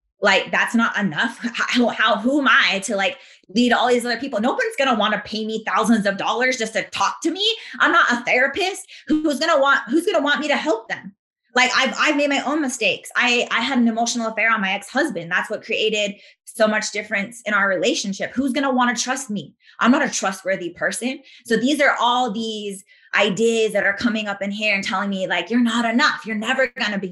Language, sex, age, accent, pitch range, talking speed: English, female, 20-39, American, 195-260 Hz, 230 wpm